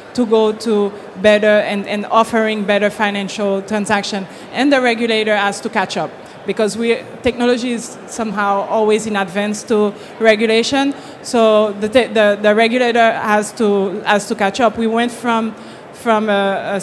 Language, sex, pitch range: English, female, 210-235 Hz